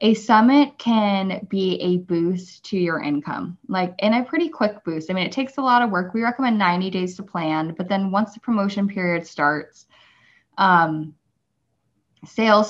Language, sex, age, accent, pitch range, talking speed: English, female, 10-29, American, 170-200 Hz, 180 wpm